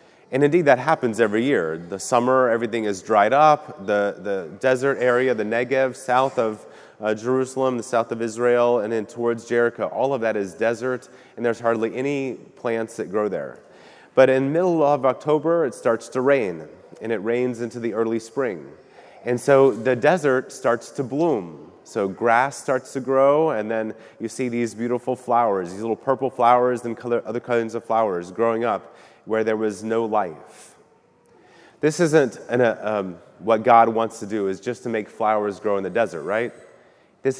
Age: 30-49